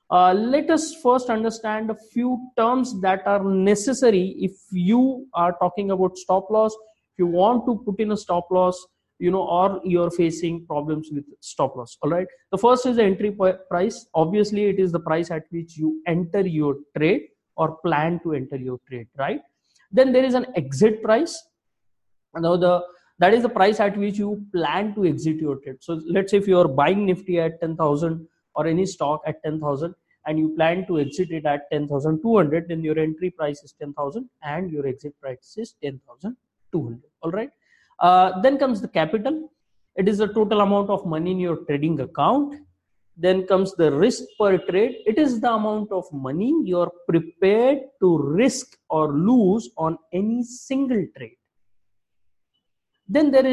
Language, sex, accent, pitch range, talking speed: English, male, Indian, 155-215 Hz, 175 wpm